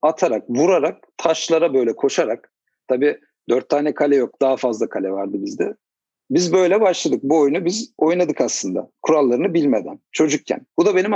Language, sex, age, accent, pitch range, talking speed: Turkish, male, 50-69, native, 135-195 Hz, 155 wpm